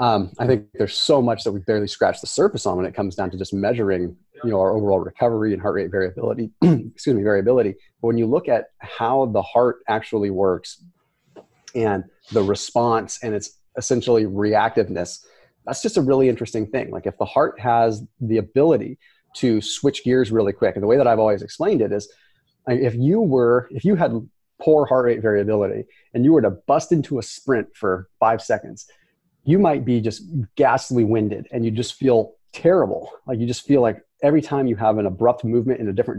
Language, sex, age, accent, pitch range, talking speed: English, male, 30-49, American, 105-130 Hz, 205 wpm